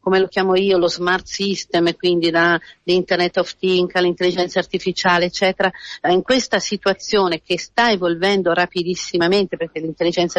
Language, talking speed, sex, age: Italian, 140 wpm, female, 40-59